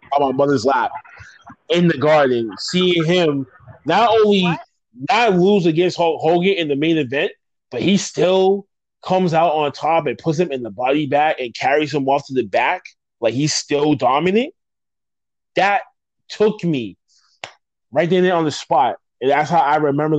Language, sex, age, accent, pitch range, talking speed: English, male, 20-39, American, 140-175 Hz, 170 wpm